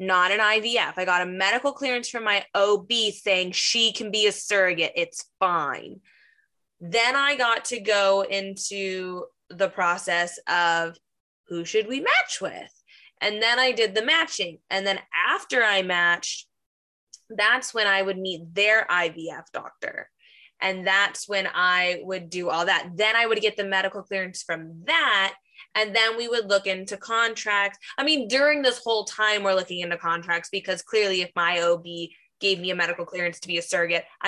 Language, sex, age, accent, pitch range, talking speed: English, female, 20-39, American, 180-230 Hz, 175 wpm